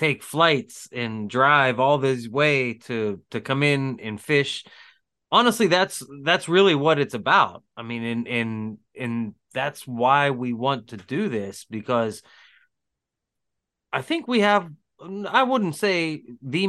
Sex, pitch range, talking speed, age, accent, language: male, 115-155 Hz, 145 wpm, 30-49, American, English